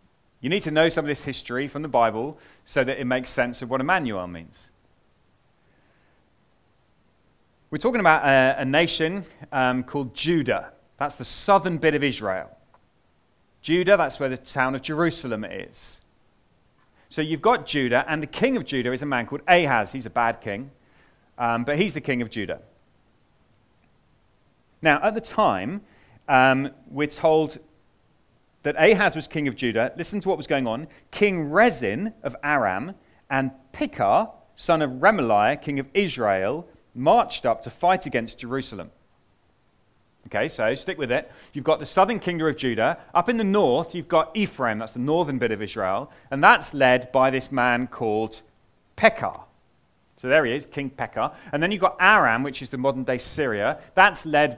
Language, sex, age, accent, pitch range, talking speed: English, male, 30-49, British, 125-160 Hz, 170 wpm